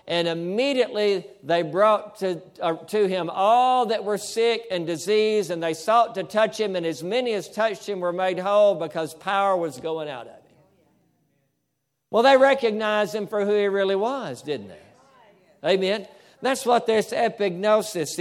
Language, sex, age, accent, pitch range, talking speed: English, male, 60-79, American, 165-210 Hz, 170 wpm